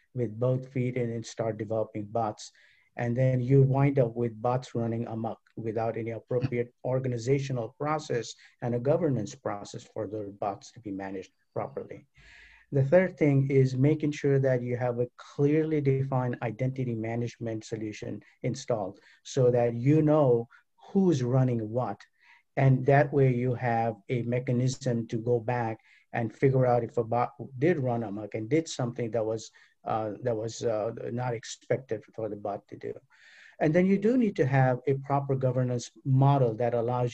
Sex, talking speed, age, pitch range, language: male, 170 wpm, 50-69, 115-135 Hz, English